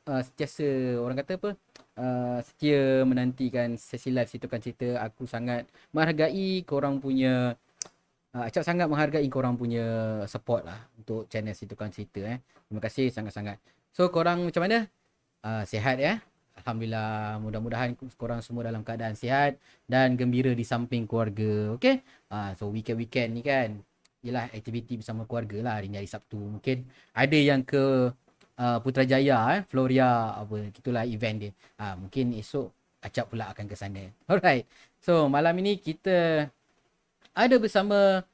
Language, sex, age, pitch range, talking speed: Malay, male, 30-49, 120-145 Hz, 155 wpm